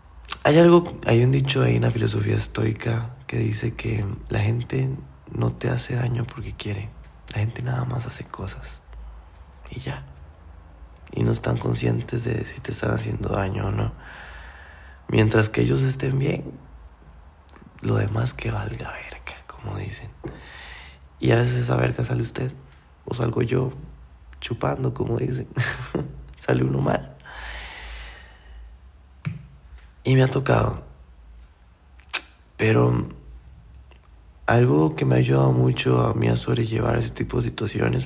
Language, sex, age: Spanish, male, 20-39